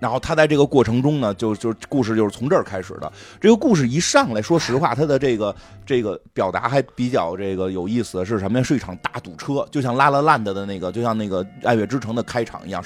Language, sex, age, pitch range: Chinese, male, 30-49, 105-150 Hz